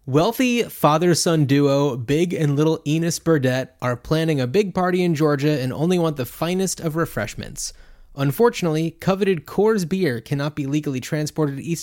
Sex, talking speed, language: male, 150 wpm, English